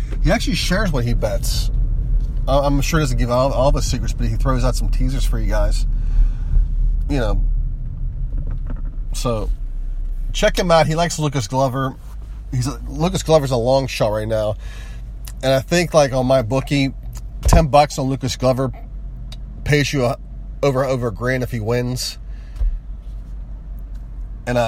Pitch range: 110-140 Hz